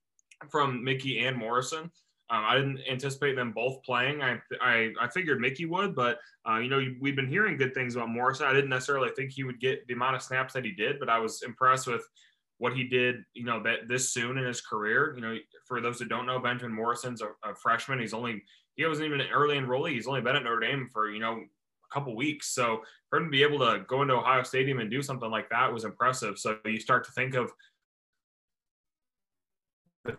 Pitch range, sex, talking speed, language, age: 115-135 Hz, male, 230 wpm, English, 20-39